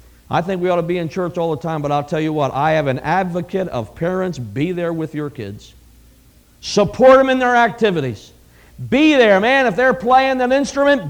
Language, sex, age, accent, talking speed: English, male, 50-69, American, 215 wpm